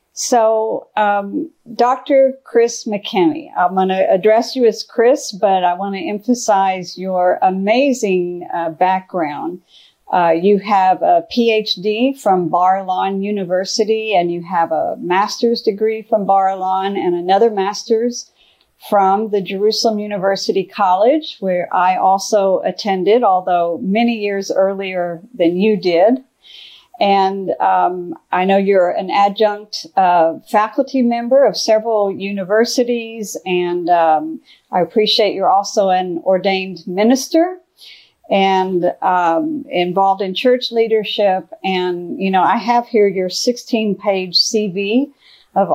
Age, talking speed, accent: 50-69, 125 wpm, American